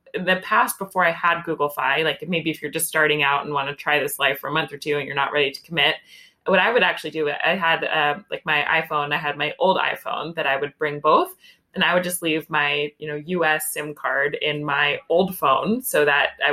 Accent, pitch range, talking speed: American, 150-180 Hz, 260 wpm